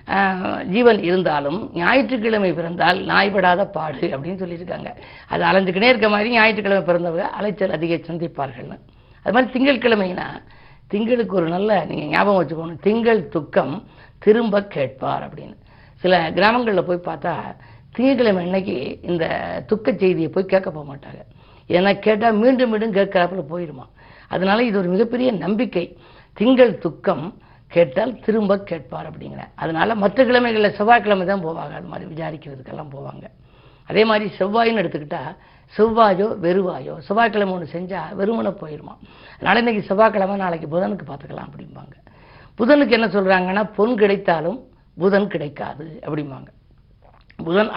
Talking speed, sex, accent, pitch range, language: 125 wpm, female, native, 170-215 Hz, Tamil